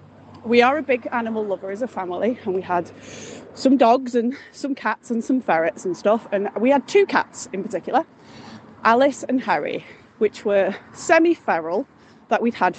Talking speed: 180 wpm